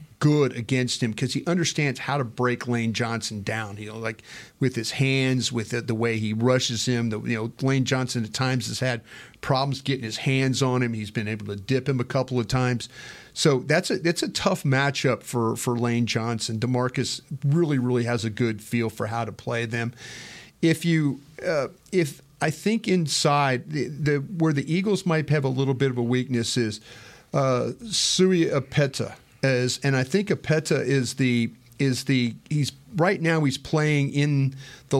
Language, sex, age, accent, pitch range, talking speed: English, male, 40-59, American, 120-150 Hz, 195 wpm